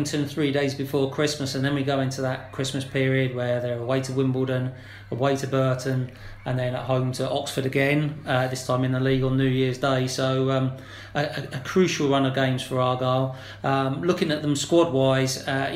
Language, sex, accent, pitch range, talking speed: English, male, British, 125-135 Hz, 205 wpm